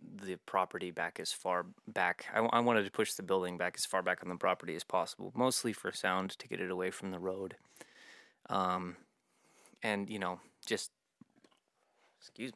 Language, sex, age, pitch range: English, male, 20-39, 90-105 Hz